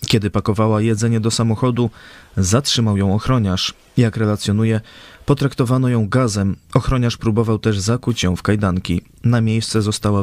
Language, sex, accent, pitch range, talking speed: Polish, male, native, 100-125 Hz, 135 wpm